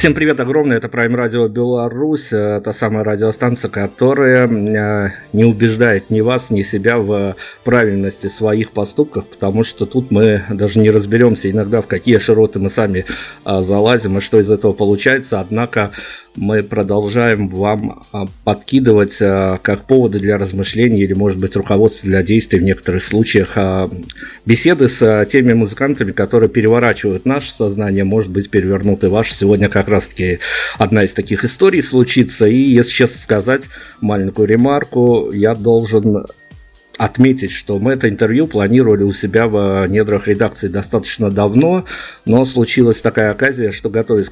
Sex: male